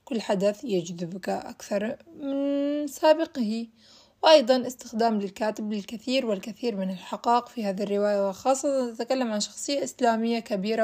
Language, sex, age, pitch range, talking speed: Arabic, female, 20-39, 205-270 Hz, 115 wpm